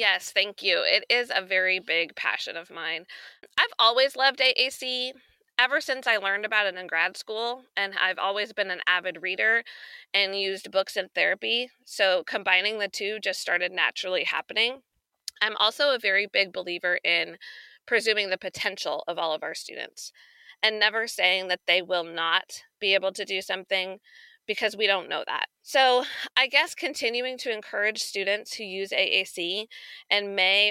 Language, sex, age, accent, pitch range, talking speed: English, female, 20-39, American, 190-235 Hz, 170 wpm